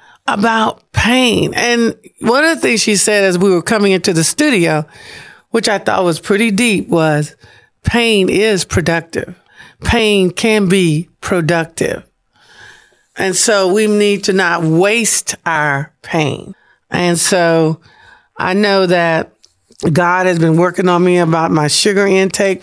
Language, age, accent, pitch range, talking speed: English, 50-69, American, 165-195 Hz, 145 wpm